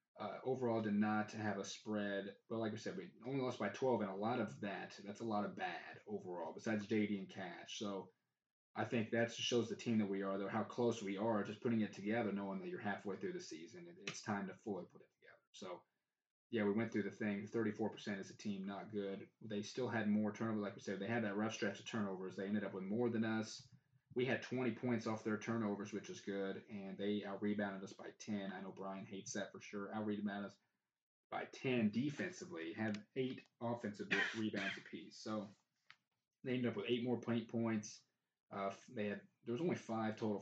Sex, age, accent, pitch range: male, 20-39, American, 100-115 Hz